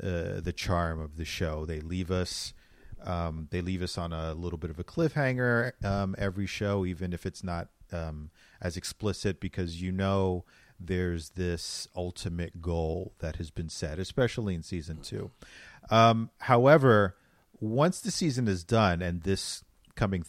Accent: American